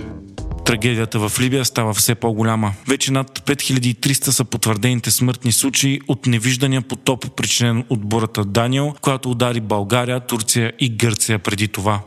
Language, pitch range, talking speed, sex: Bulgarian, 115-130 Hz, 140 wpm, male